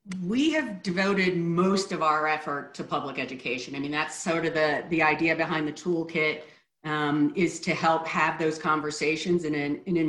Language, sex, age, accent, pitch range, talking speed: English, female, 40-59, American, 155-190 Hz, 190 wpm